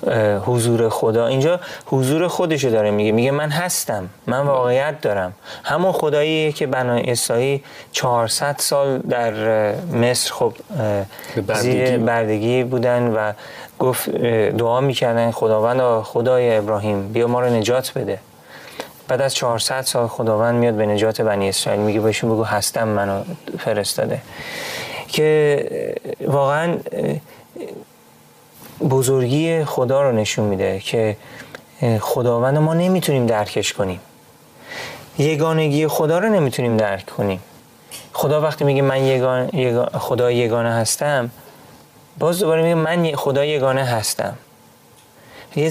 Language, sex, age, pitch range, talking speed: Persian, male, 30-49, 115-150 Hz, 115 wpm